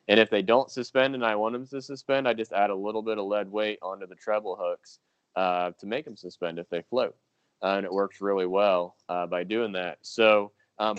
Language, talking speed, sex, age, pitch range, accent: English, 240 wpm, male, 20-39, 95-115 Hz, American